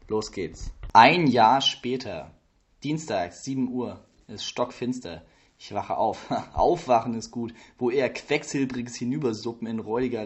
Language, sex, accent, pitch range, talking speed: German, male, German, 110-130 Hz, 130 wpm